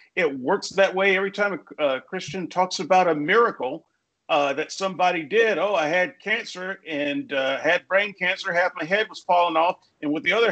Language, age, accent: English, 50-69, American